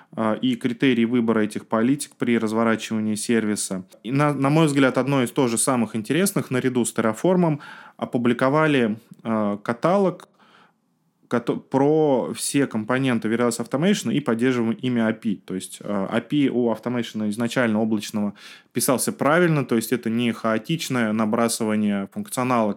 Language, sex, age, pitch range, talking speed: Russian, male, 20-39, 110-130 Hz, 125 wpm